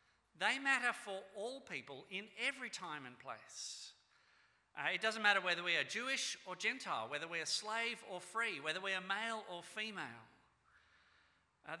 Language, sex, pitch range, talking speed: English, male, 165-220 Hz, 170 wpm